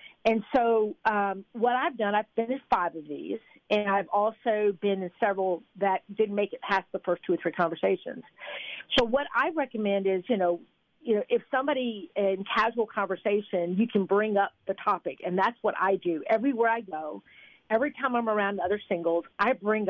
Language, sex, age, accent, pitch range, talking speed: English, female, 50-69, American, 190-245 Hz, 195 wpm